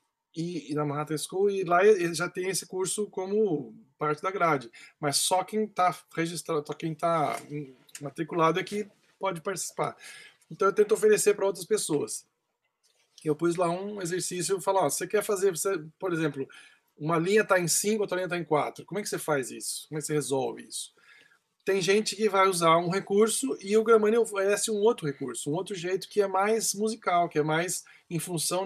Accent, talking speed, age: Brazilian, 205 wpm, 20-39